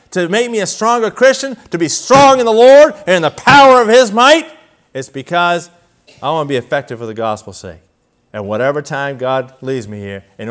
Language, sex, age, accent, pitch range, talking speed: English, male, 40-59, American, 140-225 Hz, 215 wpm